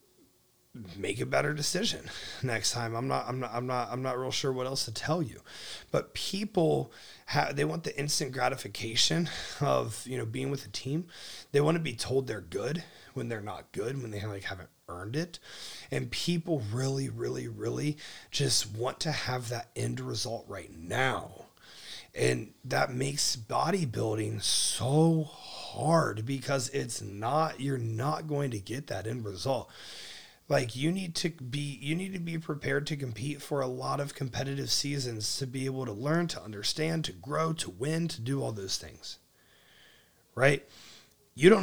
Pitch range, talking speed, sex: 115-150 Hz, 175 wpm, male